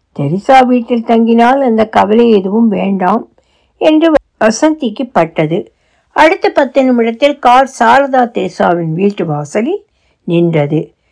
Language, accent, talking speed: Tamil, native, 105 wpm